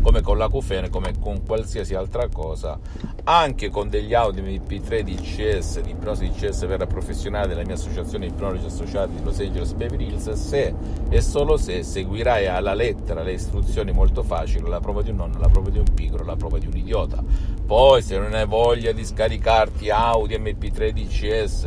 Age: 50-69